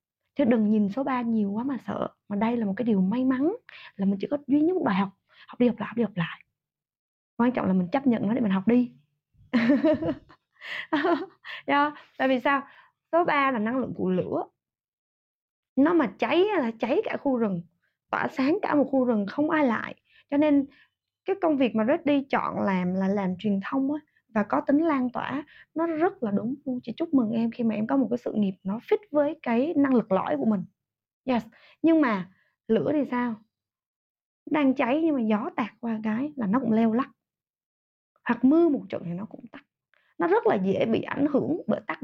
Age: 20-39